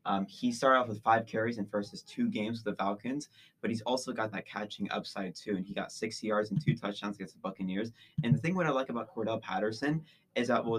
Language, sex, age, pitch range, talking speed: English, male, 20-39, 105-135 Hz, 250 wpm